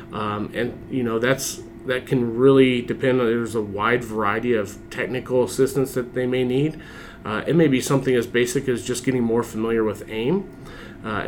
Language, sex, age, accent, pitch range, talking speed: English, male, 30-49, American, 115-135 Hz, 185 wpm